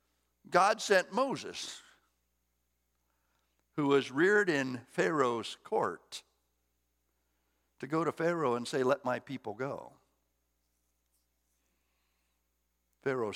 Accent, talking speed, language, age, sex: American, 90 wpm, English, 60-79, male